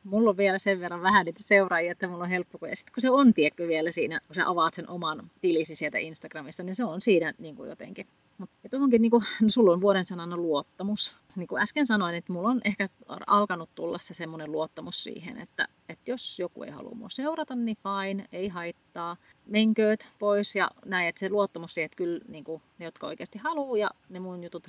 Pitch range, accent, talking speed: 165-205 Hz, native, 215 wpm